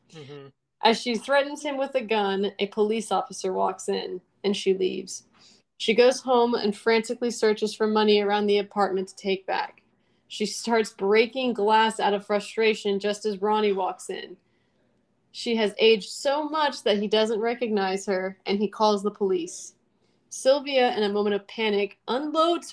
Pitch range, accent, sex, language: 200-235 Hz, American, female, English